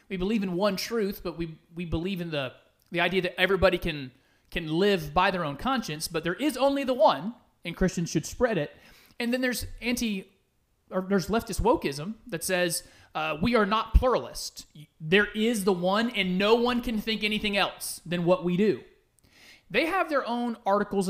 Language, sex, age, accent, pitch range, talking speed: English, male, 30-49, American, 175-225 Hz, 195 wpm